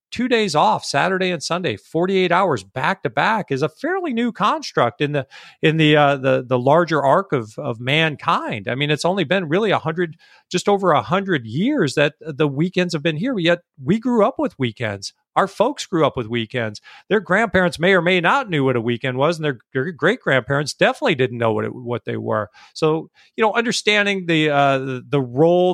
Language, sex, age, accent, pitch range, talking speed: English, male, 40-59, American, 130-165 Hz, 215 wpm